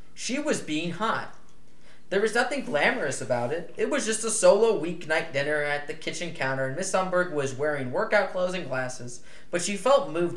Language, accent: English, American